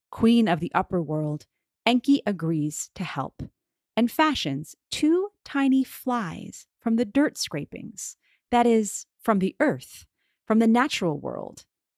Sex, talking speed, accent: female, 135 wpm, American